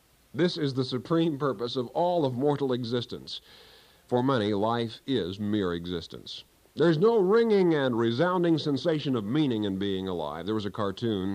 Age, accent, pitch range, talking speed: 50-69, American, 90-145 Hz, 165 wpm